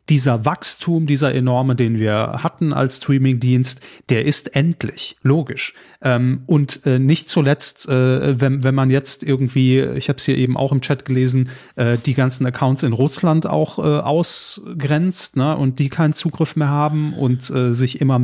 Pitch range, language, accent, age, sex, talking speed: 125-150 Hz, German, German, 30-49, male, 150 wpm